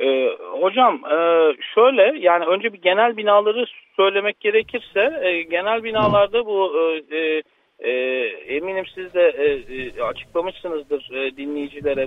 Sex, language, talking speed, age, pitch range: male, Turkish, 90 wpm, 50-69, 145-220 Hz